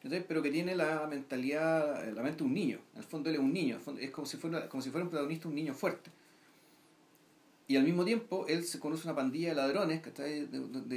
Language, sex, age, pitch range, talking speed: Spanish, male, 40-59, 140-175 Hz, 235 wpm